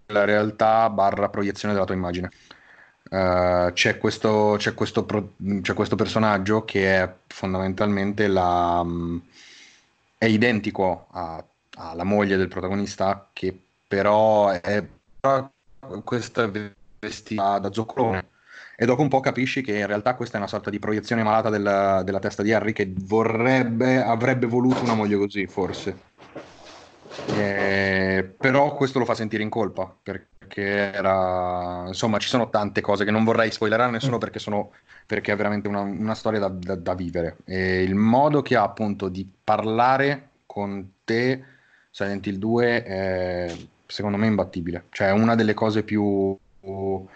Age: 30-49